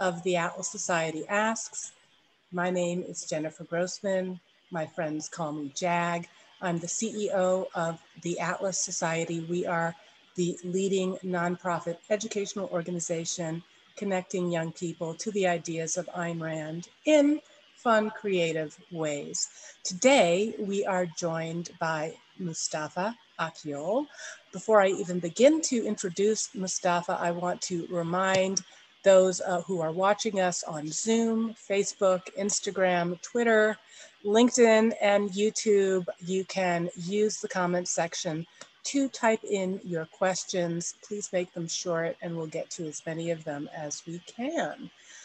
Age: 40-59